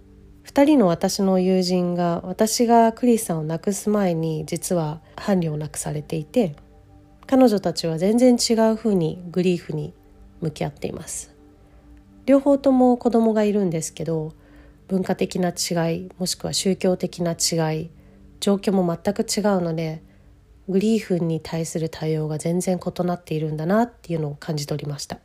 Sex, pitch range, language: female, 150-190 Hz, English